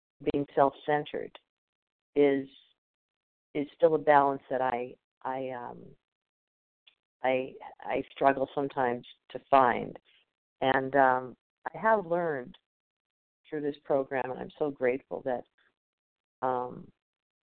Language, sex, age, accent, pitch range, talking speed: English, female, 50-69, American, 130-150 Hz, 110 wpm